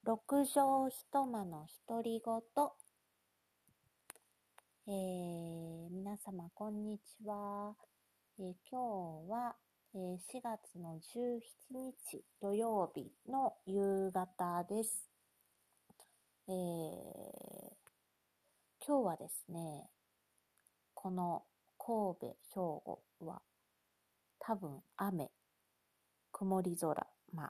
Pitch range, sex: 170-215 Hz, female